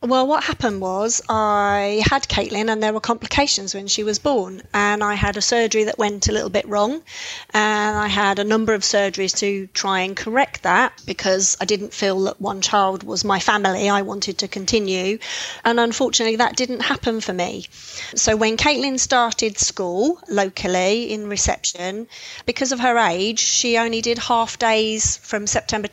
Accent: British